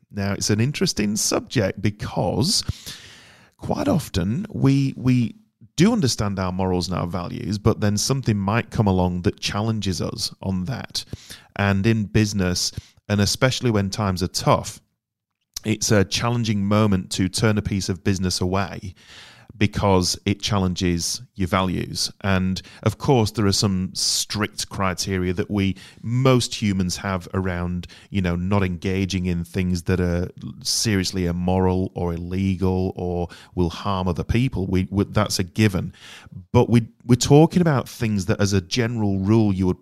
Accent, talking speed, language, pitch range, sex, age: British, 155 wpm, English, 95-115 Hz, male, 30-49